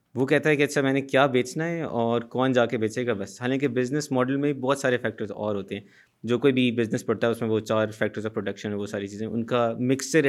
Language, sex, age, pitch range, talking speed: Urdu, male, 20-39, 110-135 Hz, 270 wpm